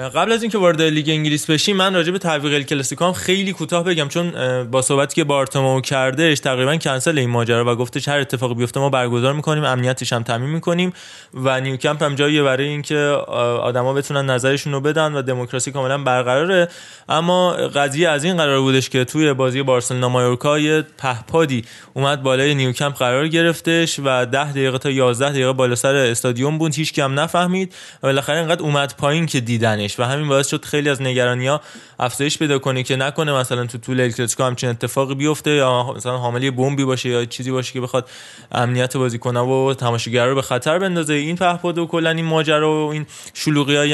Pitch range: 130-150 Hz